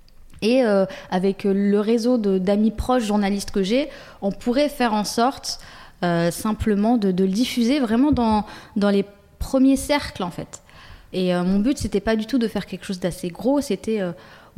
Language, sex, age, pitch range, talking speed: French, female, 20-39, 195-250 Hz, 190 wpm